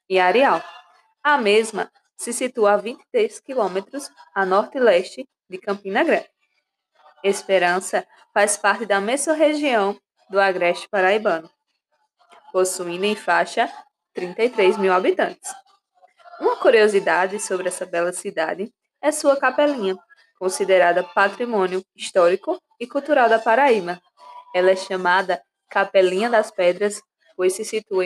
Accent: Brazilian